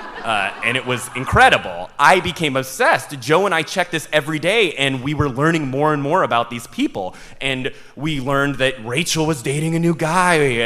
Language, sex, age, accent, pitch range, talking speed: English, male, 30-49, American, 120-155 Hz, 195 wpm